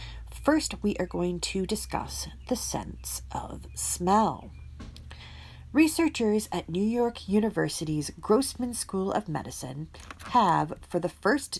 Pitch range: 135-220 Hz